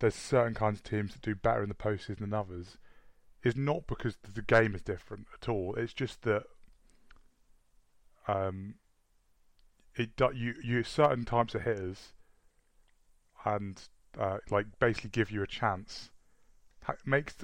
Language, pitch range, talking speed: English, 100-115 Hz, 150 wpm